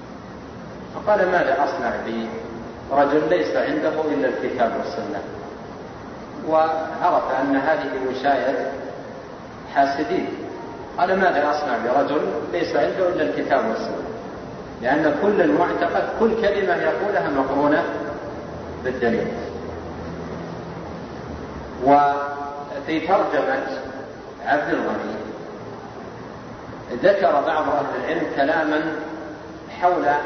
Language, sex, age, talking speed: Arabic, male, 40-59, 80 wpm